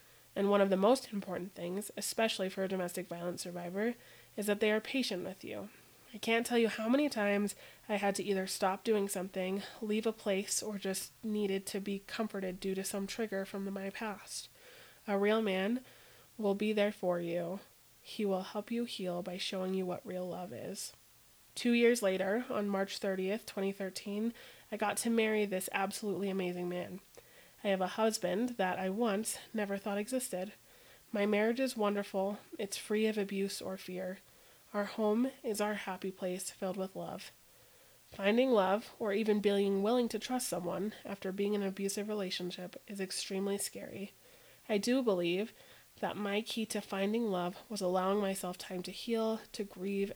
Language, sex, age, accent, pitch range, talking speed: English, female, 20-39, American, 190-215 Hz, 180 wpm